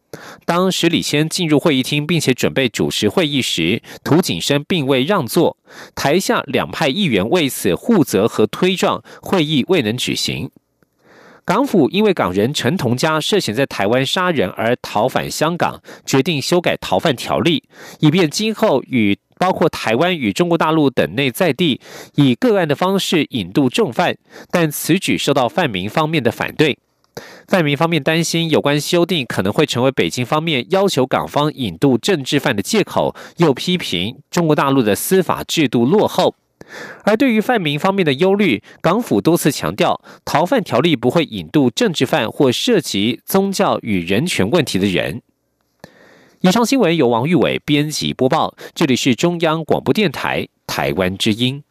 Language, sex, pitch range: German, male, 135-180 Hz